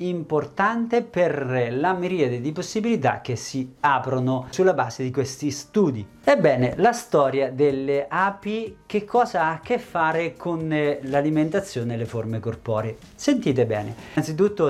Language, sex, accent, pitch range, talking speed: Italian, male, native, 130-185 Hz, 140 wpm